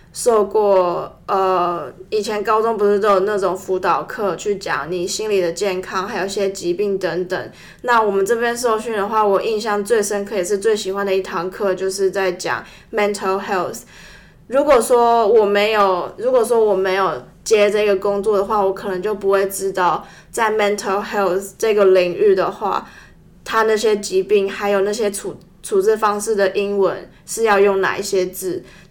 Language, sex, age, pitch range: Chinese, female, 20-39, 190-220 Hz